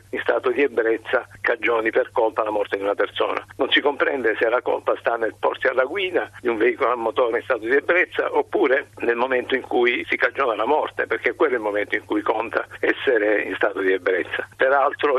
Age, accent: 50-69, native